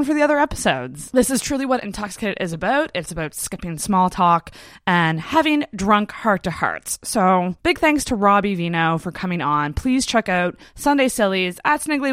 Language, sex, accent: English, female, American